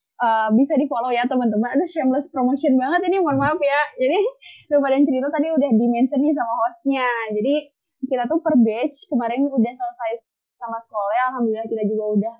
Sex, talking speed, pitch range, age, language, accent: female, 185 wpm, 220-270 Hz, 10-29, Indonesian, native